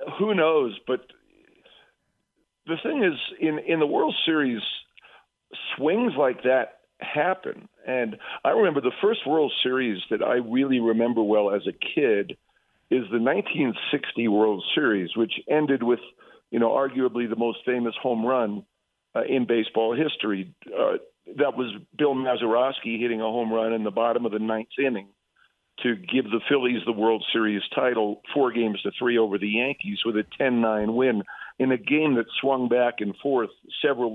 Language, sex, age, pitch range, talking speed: English, male, 50-69, 110-135 Hz, 165 wpm